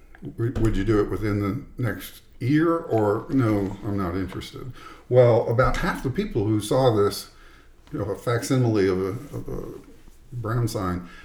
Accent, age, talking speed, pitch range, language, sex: American, 50-69, 160 wpm, 95-115 Hz, English, male